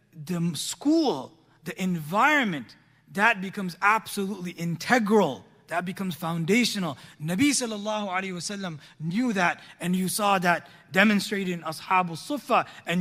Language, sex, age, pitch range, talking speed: English, male, 30-49, 175-250 Hz, 120 wpm